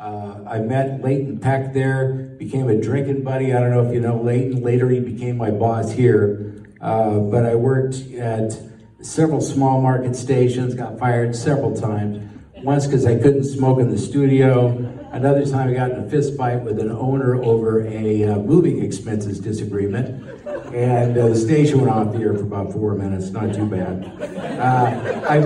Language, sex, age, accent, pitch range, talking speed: English, male, 50-69, American, 115-140 Hz, 185 wpm